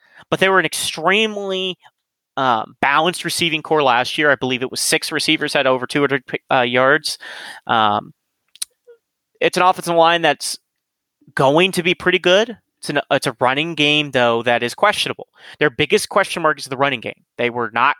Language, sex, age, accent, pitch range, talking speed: English, male, 30-49, American, 125-160 Hz, 175 wpm